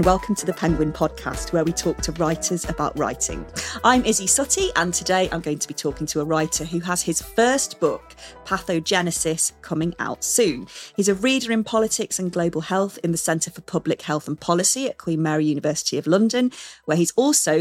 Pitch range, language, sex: 160-215 Hz, English, female